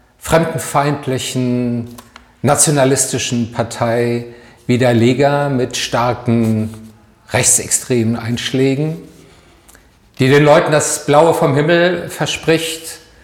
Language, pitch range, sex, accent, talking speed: German, 115-145 Hz, male, German, 70 wpm